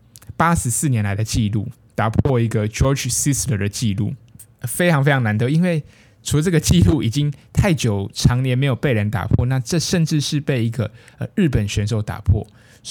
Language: Chinese